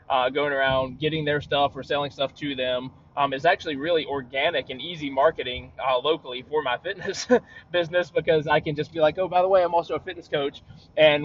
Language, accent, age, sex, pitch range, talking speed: English, American, 20-39, male, 140-170 Hz, 220 wpm